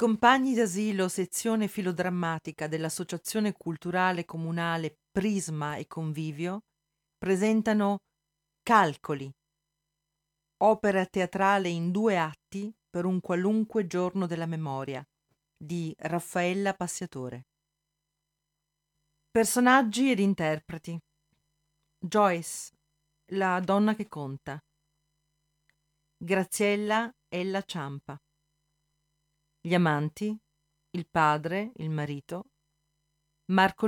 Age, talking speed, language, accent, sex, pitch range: 40-59, 80 wpm, Italian, native, female, 150-195 Hz